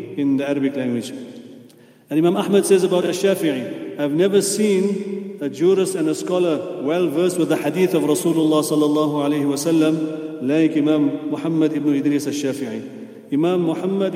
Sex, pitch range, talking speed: male, 155-185 Hz, 155 wpm